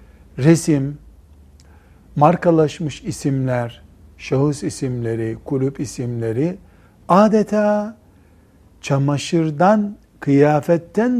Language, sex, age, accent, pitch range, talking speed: Turkish, male, 60-79, native, 110-160 Hz, 55 wpm